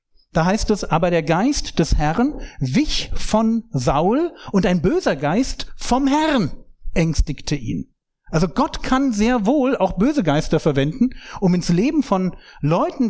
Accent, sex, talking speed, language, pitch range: German, male, 150 wpm, German, 145-225 Hz